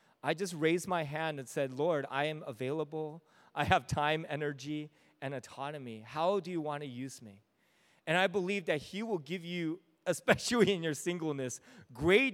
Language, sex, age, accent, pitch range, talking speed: English, male, 30-49, American, 150-195 Hz, 180 wpm